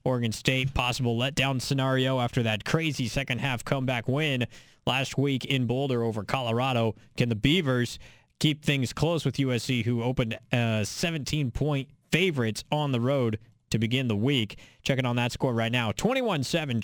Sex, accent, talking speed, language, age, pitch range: male, American, 155 wpm, English, 20-39, 120-150 Hz